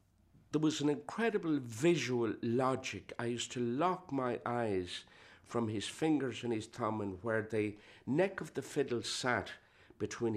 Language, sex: English, male